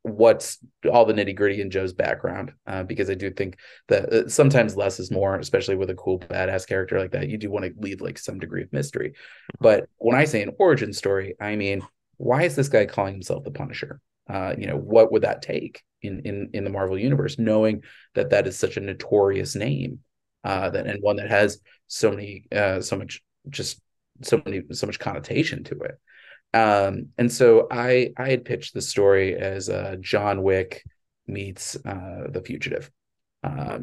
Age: 20-39